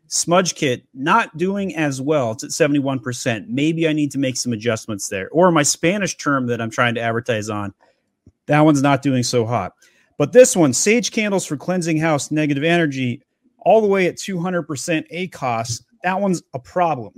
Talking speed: 185 wpm